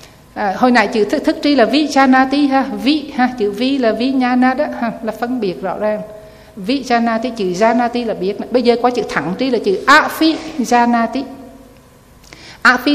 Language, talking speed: Vietnamese, 205 wpm